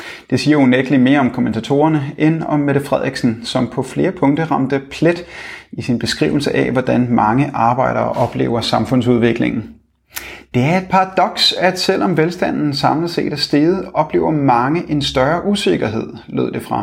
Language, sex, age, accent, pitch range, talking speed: Danish, male, 30-49, native, 125-155 Hz, 160 wpm